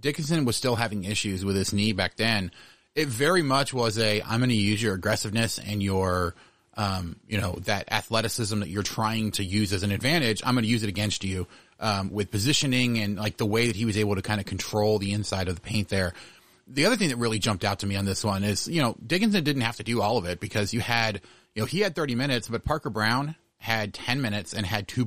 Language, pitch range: English, 105-125 Hz